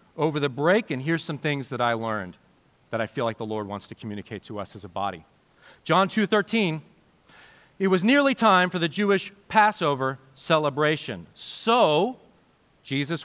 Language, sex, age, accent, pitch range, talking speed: English, male, 40-59, American, 145-195 Hz, 170 wpm